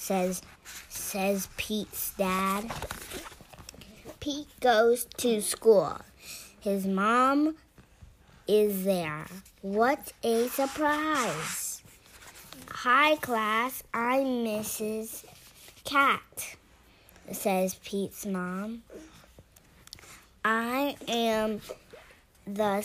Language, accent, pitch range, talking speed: English, American, 190-240 Hz, 70 wpm